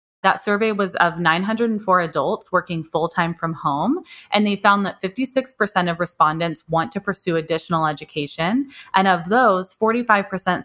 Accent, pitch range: American, 160-195 Hz